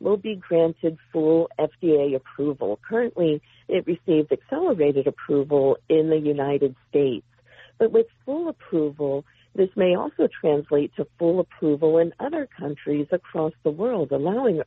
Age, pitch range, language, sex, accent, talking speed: 50-69, 140-190 Hz, English, female, American, 135 wpm